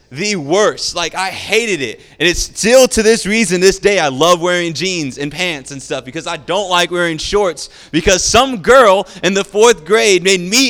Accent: American